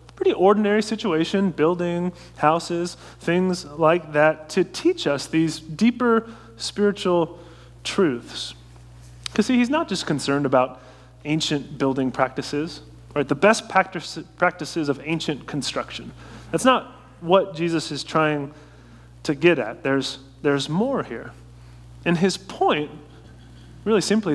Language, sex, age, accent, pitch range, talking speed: English, male, 30-49, American, 130-190 Hz, 125 wpm